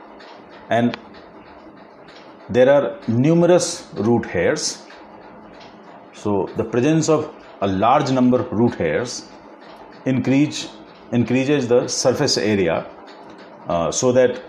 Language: Hindi